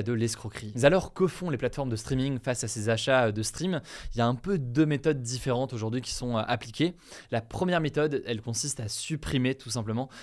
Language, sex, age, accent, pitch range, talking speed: French, male, 20-39, French, 115-150 Hz, 210 wpm